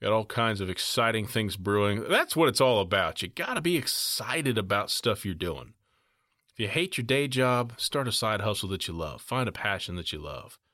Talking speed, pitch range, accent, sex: 225 wpm, 95-120 Hz, American, male